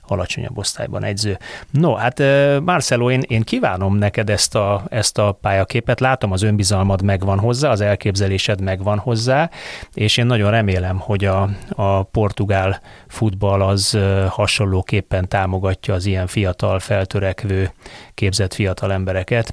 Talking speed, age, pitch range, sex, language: 130 wpm, 30-49, 95-110 Hz, male, Hungarian